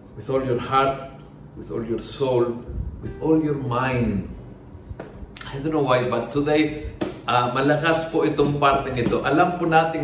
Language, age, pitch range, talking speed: Filipino, 50-69, 120-160 Hz, 160 wpm